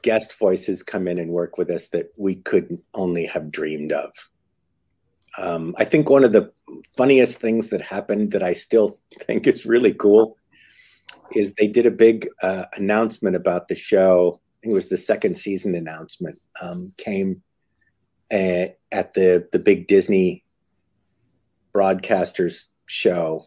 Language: English